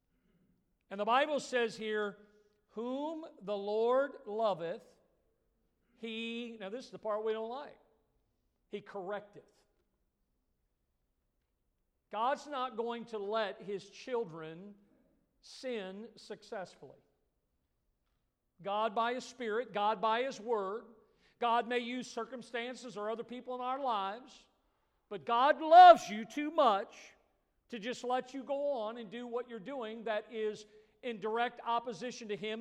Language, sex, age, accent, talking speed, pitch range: English, male, 50-69, American, 130 wpm, 210-255 Hz